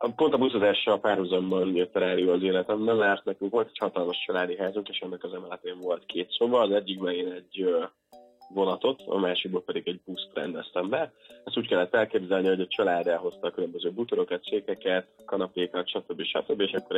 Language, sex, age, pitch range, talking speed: Hungarian, male, 20-39, 95-130 Hz, 180 wpm